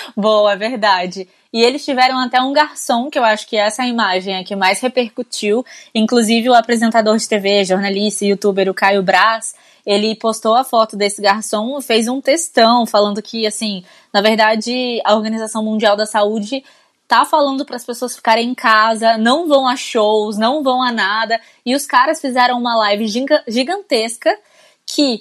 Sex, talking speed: female, 175 wpm